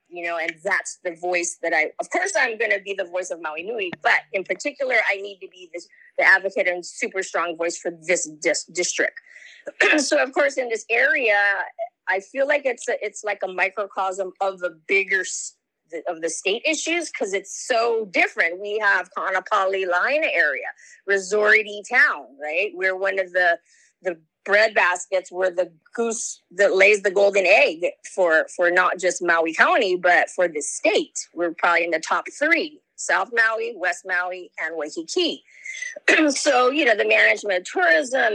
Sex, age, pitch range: female, 30-49, 180-265 Hz